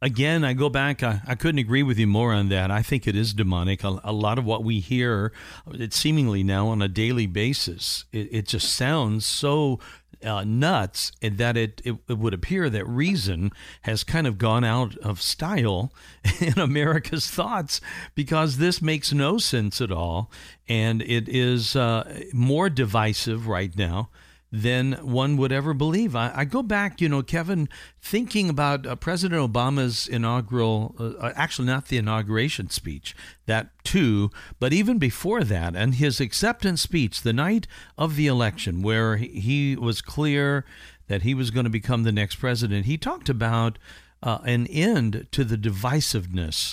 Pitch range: 110-145 Hz